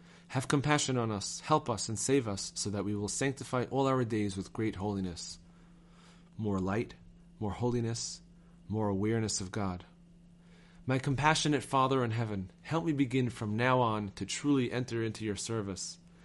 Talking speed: 165 wpm